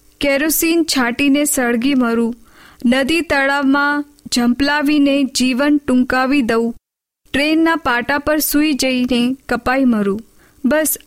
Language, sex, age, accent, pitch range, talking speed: Hindi, female, 20-39, native, 245-290 Hz, 110 wpm